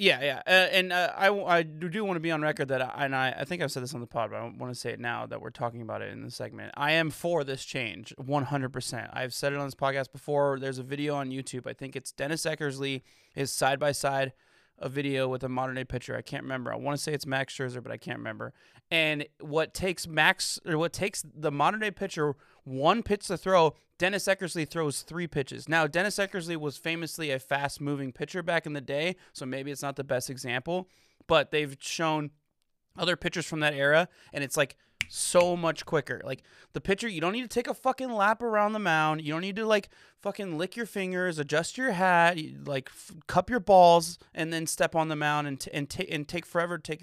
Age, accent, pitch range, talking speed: 20-39, American, 135-180 Hz, 235 wpm